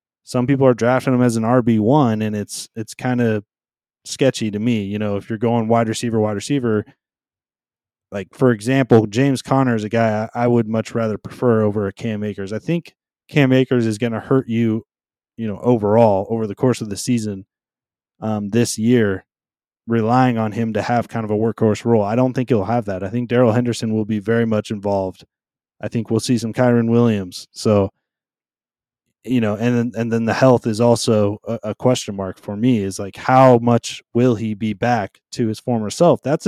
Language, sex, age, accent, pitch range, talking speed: English, male, 20-39, American, 105-125 Hz, 205 wpm